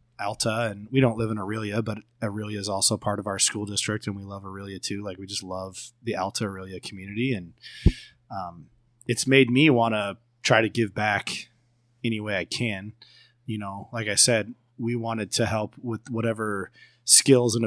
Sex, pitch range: male, 100-120 Hz